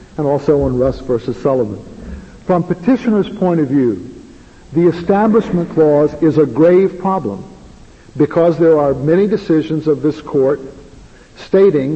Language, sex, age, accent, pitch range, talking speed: English, male, 50-69, American, 135-170 Hz, 135 wpm